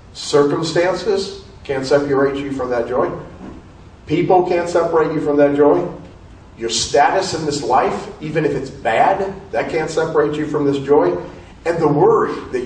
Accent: American